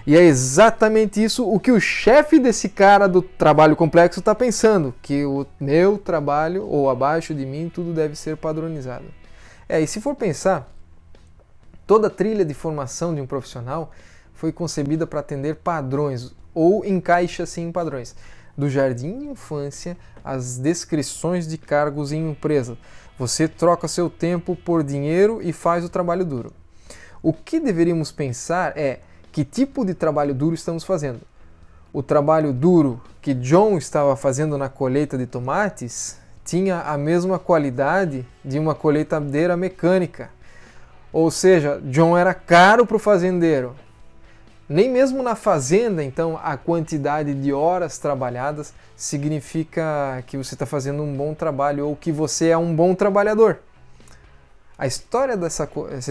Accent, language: Brazilian, Portuguese